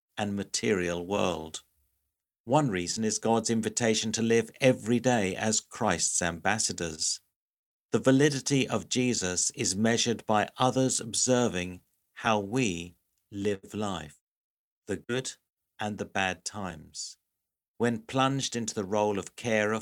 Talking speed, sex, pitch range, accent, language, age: 125 wpm, male, 90-115 Hz, British, English, 50-69